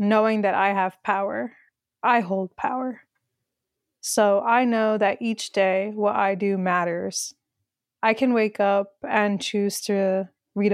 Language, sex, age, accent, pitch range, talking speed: English, female, 20-39, American, 190-215 Hz, 145 wpm